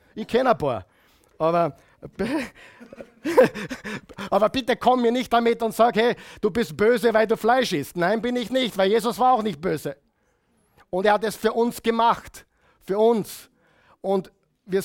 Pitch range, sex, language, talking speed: 160-230 Hz, male, German, 170 wpm